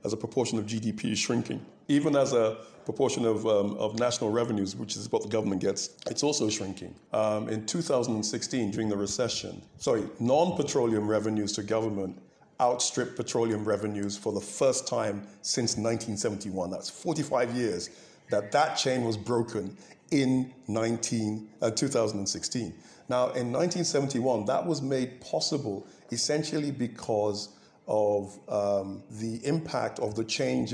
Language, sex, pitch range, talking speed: English, male, 105-120 Hz, 140 wpm